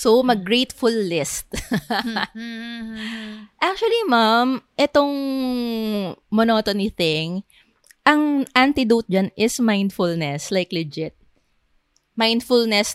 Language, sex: English, female